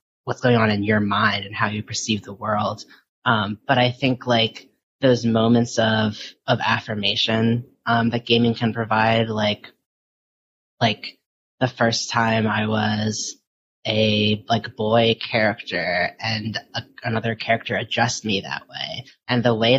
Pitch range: 110-125 Hz